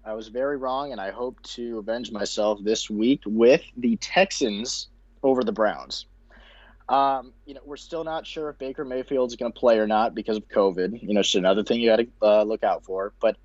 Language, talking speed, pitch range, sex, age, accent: English, 225 wpm, 105-135 Hz, male, 20-39, American